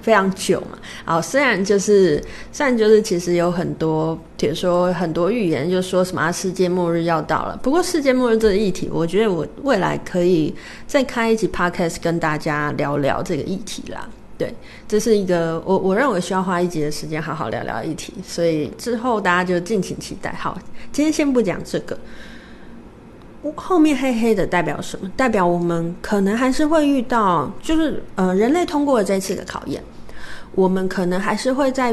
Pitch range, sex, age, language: 180-250 Hz, female, 30-49, Chinese